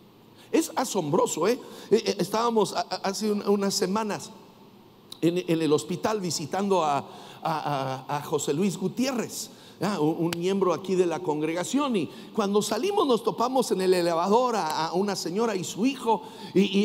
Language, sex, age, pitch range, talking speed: English, male, 60-79, 185-240 Hz, 135 wpm